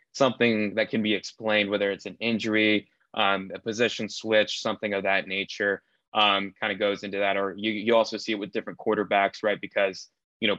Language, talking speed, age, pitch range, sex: English, 205 wpm, 20-39, 100-110 Hz, male